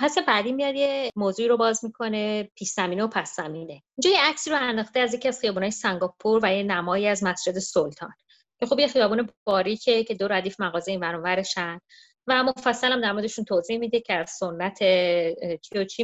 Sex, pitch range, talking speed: female, 185-230 Hz, 190 wpm